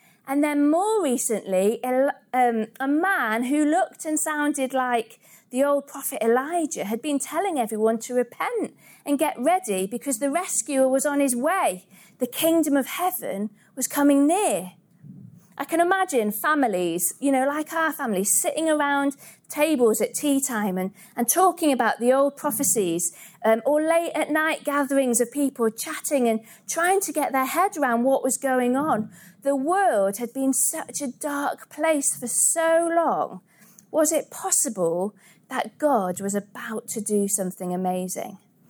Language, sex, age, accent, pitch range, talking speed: English, female, 40-59, British, 210-295 Hz, 160 wpm